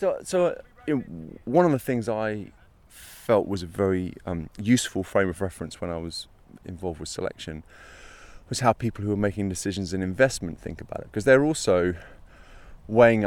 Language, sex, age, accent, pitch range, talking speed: English, male, 30-49, British, 90-115 Hz, 180 wpm